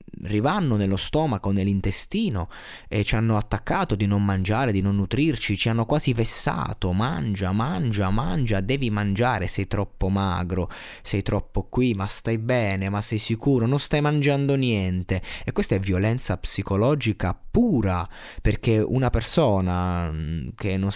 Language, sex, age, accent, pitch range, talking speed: Italian, male, 20-39, native, 95-120 Hz, 145 wpm